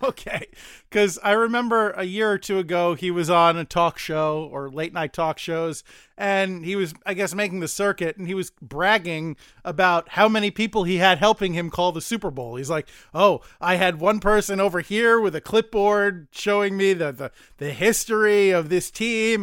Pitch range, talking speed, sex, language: 175-220 Hz, 200 wpm, male, English